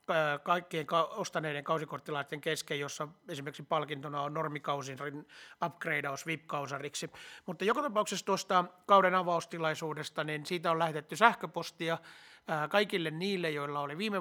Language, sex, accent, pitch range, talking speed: Finnish, male, native, 145-180 Hz, 115 wpm